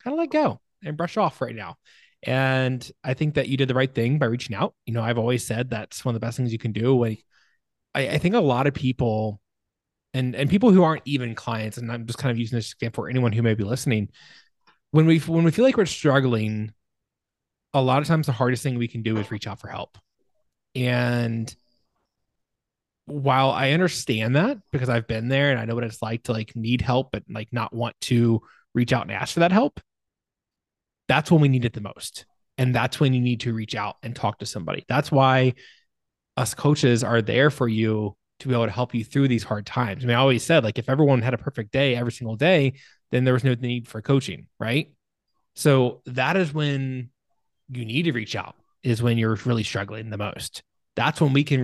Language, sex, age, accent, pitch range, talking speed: English, male, 20-39, American, 115-140 Hz, 230 wpm